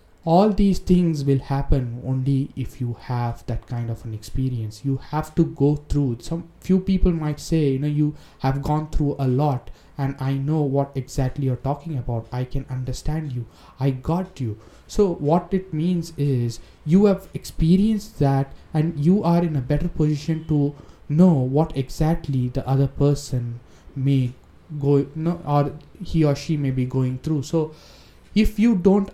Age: 20-39